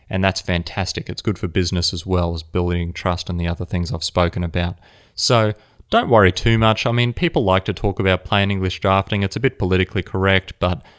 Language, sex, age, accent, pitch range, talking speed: English, male, 30-49, Australian, 90-115 Hz, 220 wpm